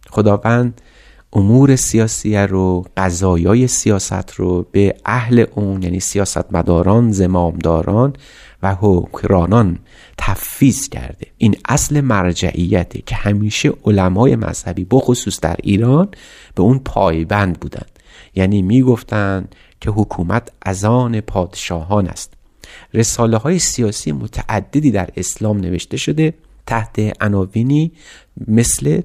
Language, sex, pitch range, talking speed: Persian, male, 95-120 Hz, 100 wpm